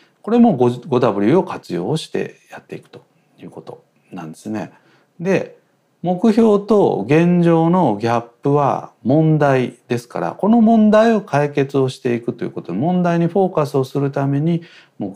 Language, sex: Japanese, male